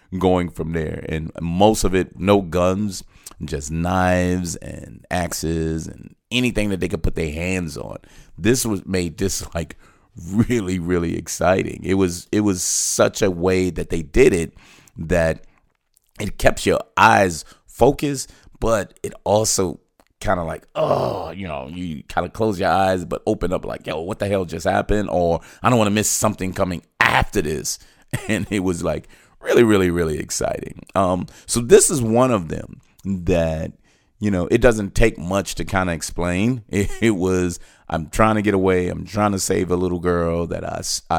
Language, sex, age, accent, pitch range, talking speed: English, male, 30-49, American, 85-100 Hz, 180 wpm